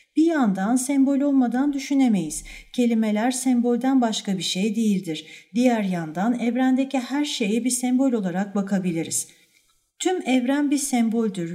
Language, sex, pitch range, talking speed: Turkish, female, 205-260 Hz, 125 wpm